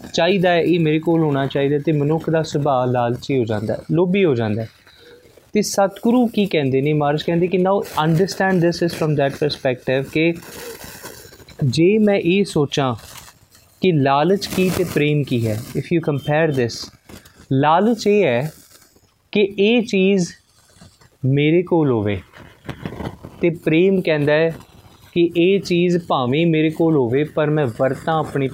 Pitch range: 135-185 Hz